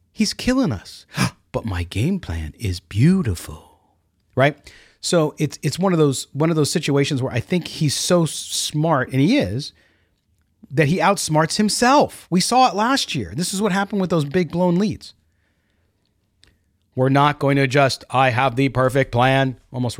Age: 40-59